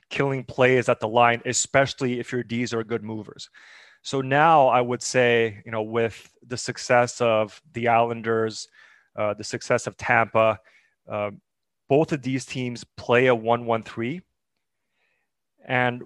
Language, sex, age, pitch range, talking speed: English, male, 30-49, 115-130 Hz, 155 wpm